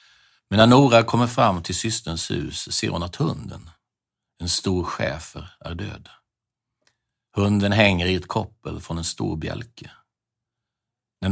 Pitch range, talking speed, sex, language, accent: 85-115 Hz, 140 wpm, male, English, Swedish